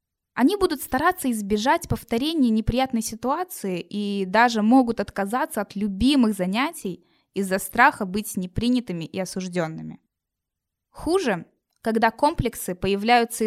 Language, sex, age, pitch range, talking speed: Russian, female, 20-39, 185-260 Hz, 105 wpm